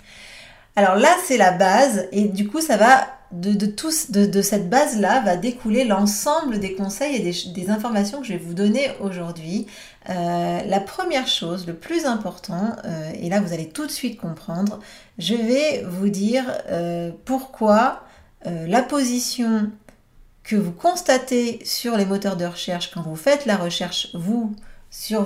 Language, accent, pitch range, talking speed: French, French, 185-255 Hz, 170 wpm